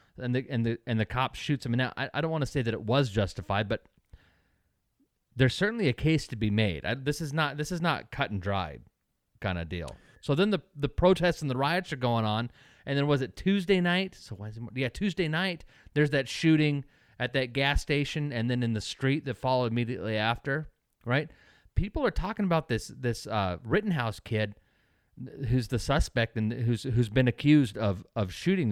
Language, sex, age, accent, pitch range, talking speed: English, male, 30-49, American, 115-160 Hz, 215 wpm